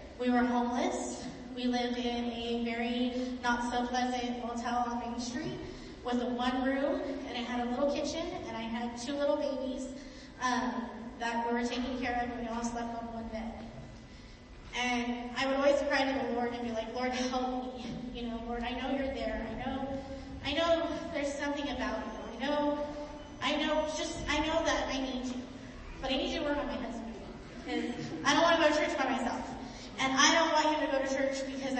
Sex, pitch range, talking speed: female, 235-275 Hz, 215 wpm